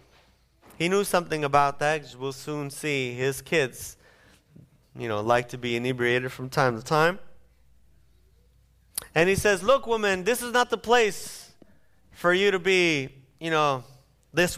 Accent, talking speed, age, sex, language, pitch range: American, 155 wpm, 30-49, male, English, 120-165 Hz